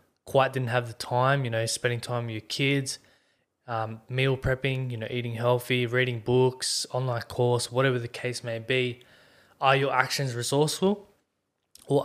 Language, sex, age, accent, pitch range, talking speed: English, male, 20-39, Australian, 115-135 Hz, 165 wpm